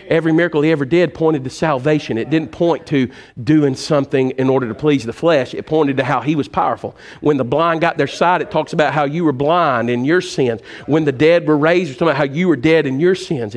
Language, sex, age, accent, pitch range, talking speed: English, male, 50-69, American, 140-180 Hz, 255 wpm